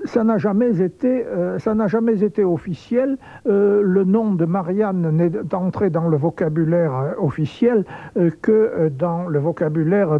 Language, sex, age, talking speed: French, male, 60-79, 165 wpm